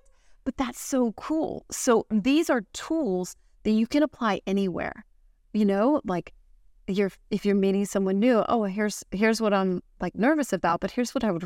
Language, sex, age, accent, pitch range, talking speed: English, female, 30-49, American, 180-225 Hz, 185 wpm